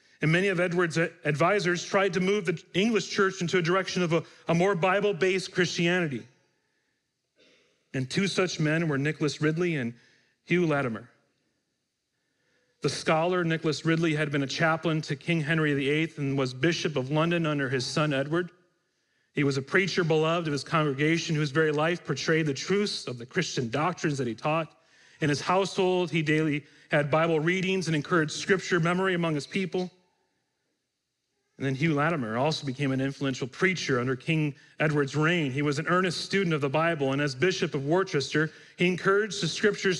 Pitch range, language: 150-185 Hz, English